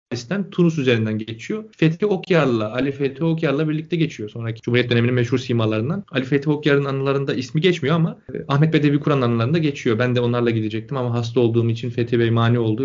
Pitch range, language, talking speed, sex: 125-160 Hz, Turkish, 190 wpm, male